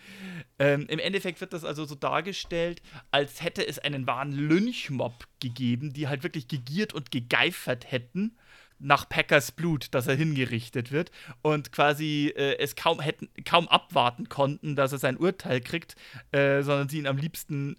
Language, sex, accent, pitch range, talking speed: German, male, German, 135-170 Hz, 165 wpm